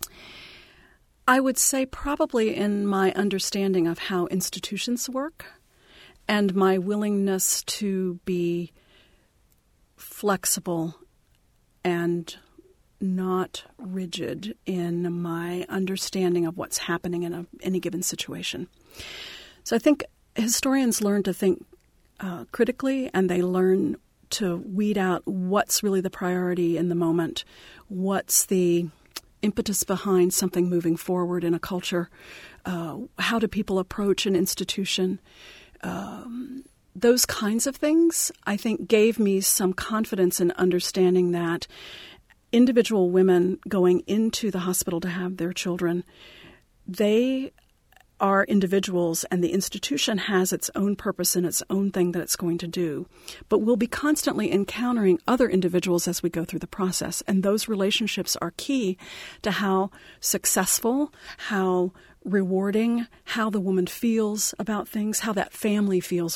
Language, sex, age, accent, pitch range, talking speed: English, female, 40-59, American, 180-215 Hz, 130 wpm